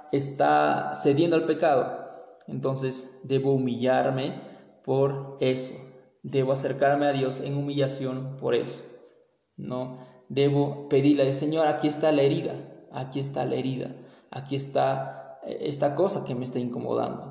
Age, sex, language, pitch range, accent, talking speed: 20-39, male, Spanish, 125-150 Hz, Mexican, 130 wpm